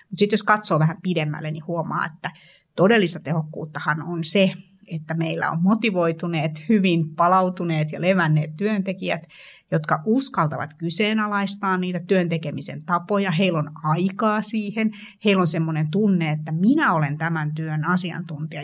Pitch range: 160-195 Hz